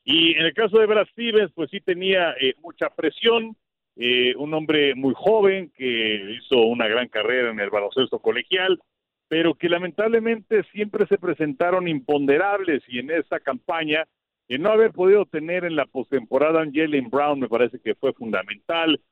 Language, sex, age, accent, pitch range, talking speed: Spanish, male, 50-69, Mexican, 130-185 Hz, 165 wpm